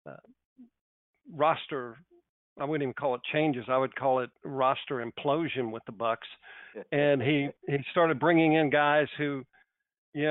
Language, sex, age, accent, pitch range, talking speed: English, male, 50-69, American, 135-165 Hz, 150 wpm